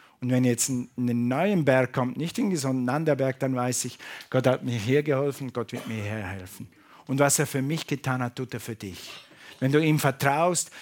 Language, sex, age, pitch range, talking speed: German, male, 50-69, 125-160 Hz, 225 wpm